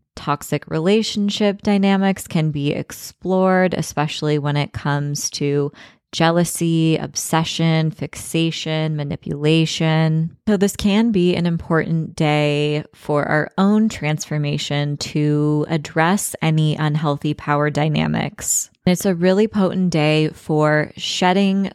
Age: 20-39